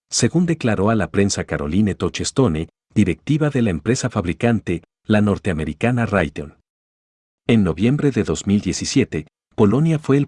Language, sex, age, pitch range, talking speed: Spanish, male, 50-69, 85-115 Hz, 130 wpm